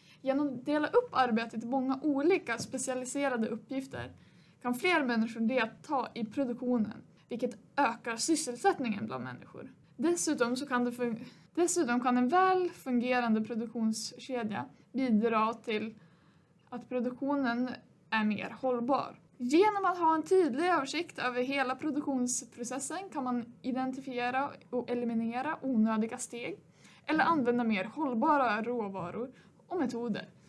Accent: native